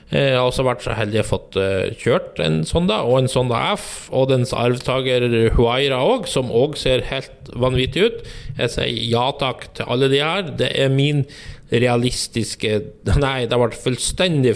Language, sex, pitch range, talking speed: English, male, 110-140 Hz, 195 wpm